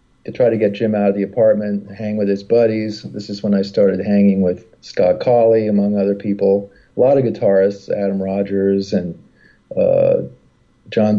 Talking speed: 180 wpm